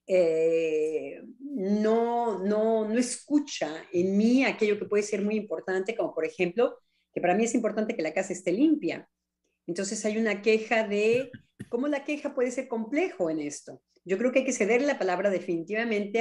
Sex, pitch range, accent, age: female, 180-240 Hz, Mexican, 40-59